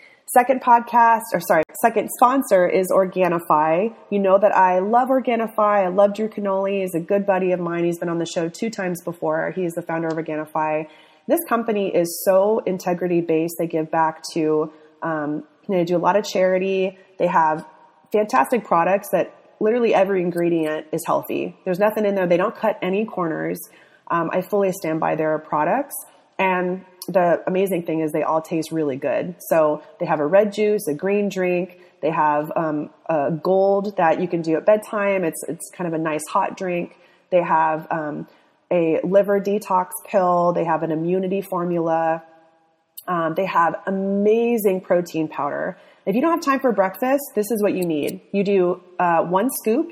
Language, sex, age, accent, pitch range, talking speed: English, female, 30-49, American, 160-200 Hz, 185 wpm